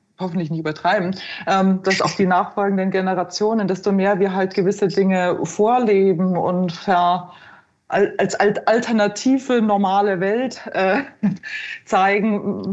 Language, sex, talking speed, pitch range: German, female, 100 wpm, 195-225 Hz